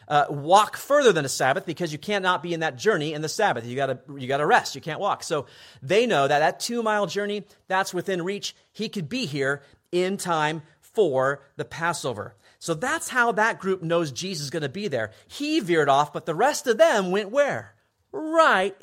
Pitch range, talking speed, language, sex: 140-210 Hz, 210 wpm, English, male